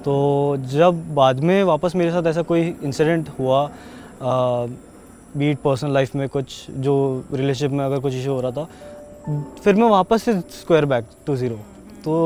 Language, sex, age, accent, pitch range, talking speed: Hindi, male, 20-39, native, 125-160 Hz, 165 wpm